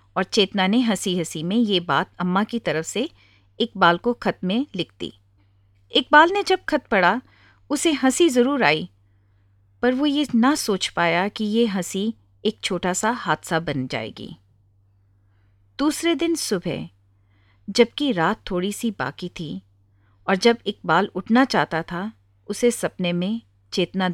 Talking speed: 150 wpm